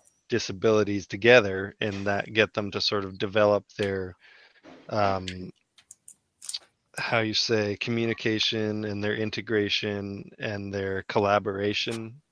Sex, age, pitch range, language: male, 20-39, 100-115 Hz, English